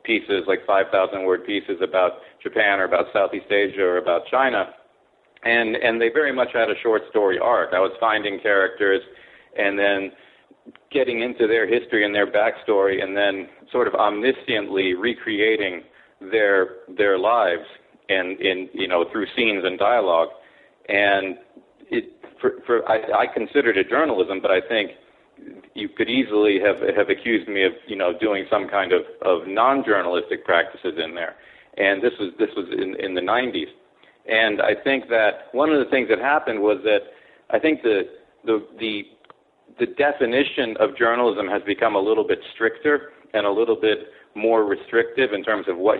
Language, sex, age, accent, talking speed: English, male, 40-59, American, 175 wpm